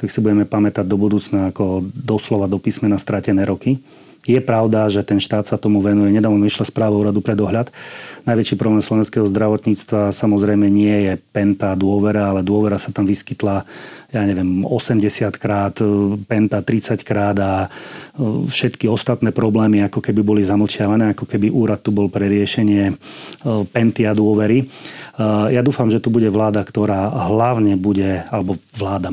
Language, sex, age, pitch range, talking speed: Slovak, male, 30-49, 100-110 Hz, 160 wpm